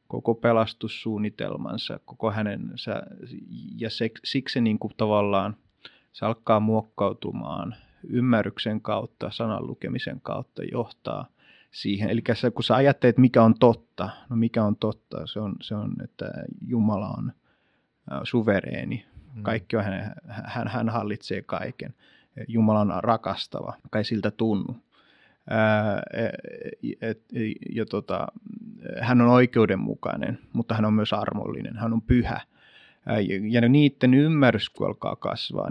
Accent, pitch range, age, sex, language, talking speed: native, 105-120 Hz, 30-49, male, Finnish, 135 wpm